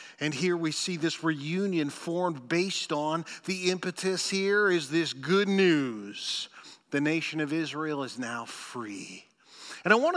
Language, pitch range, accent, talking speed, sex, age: English, 160-210 Hz, American, 155 wpm, male, 40-59